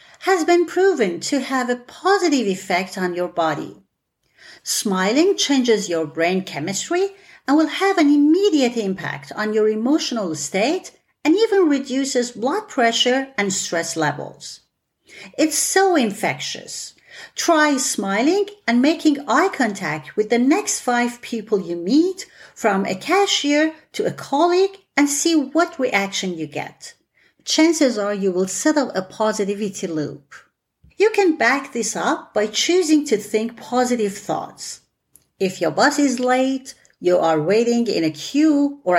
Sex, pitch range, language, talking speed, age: female, 200-325 Hz, English, 145 wpm, 40-59